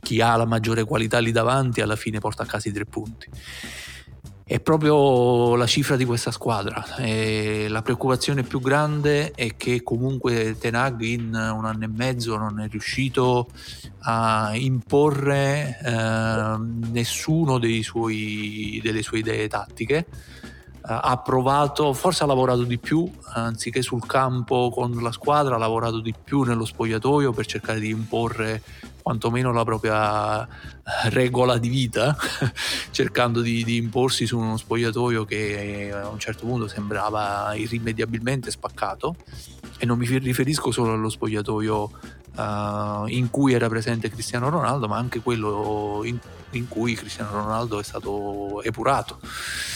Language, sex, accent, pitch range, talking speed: Italian, male, native, 110-125 Hz, 140 wpm